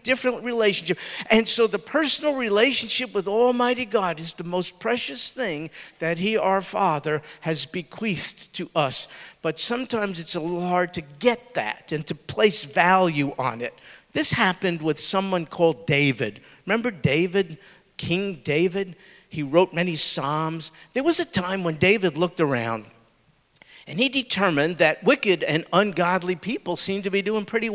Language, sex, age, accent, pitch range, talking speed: English, male, 50-69, American, 160-225 Hz, 160 wpm